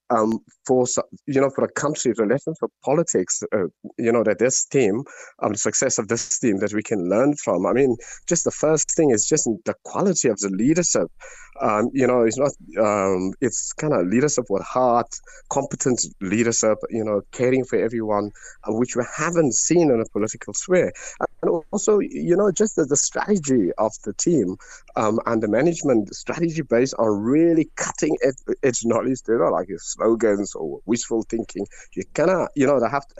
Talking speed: 190 wpm